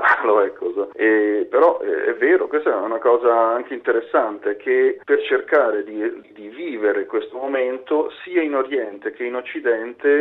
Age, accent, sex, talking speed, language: 40-59, native, male, 145 wpm, Italian